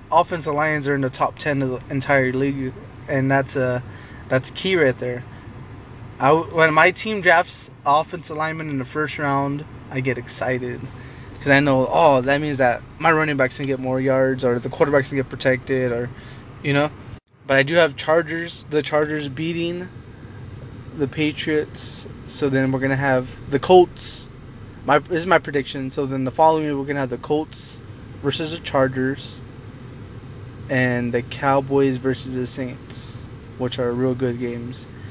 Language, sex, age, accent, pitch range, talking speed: English, male, 20-39, American, 125-150 Hz, 170 wpm